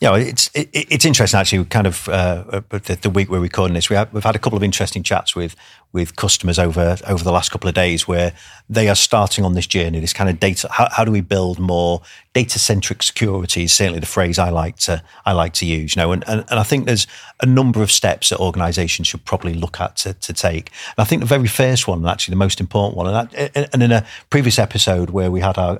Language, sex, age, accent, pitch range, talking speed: English, male, 40-59, British, 90-110 Hz, 260 wpm